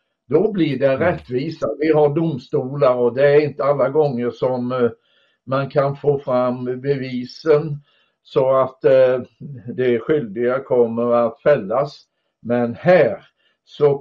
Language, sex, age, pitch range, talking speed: English, male, 60-79, 125-155 Hz, 125 wpm